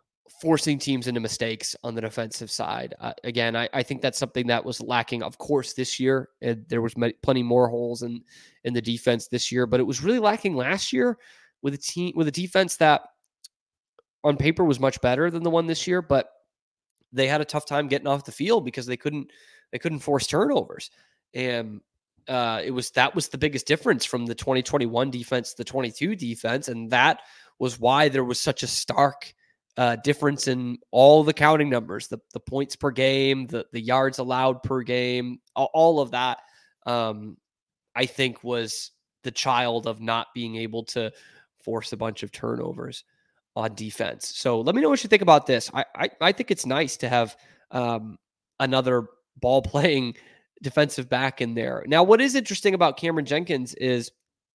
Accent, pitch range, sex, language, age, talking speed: American, 120-145 Hz, male, English, 20-39, 195 wpm